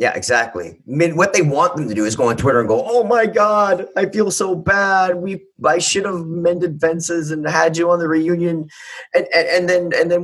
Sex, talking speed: male, 240 wpm